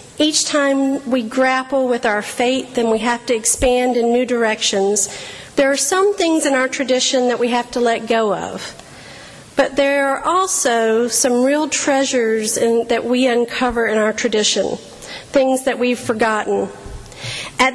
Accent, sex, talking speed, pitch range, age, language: American, female, 160 wpm, 235-275 Hz, 50-69, English